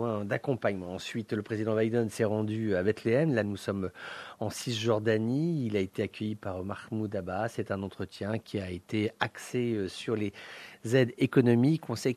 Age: 40-59